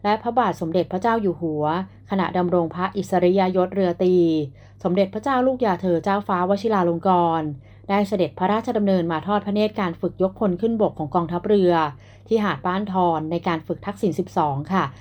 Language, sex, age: Thai, female, 30-49